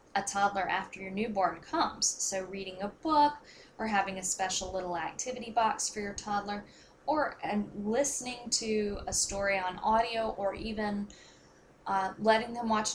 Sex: female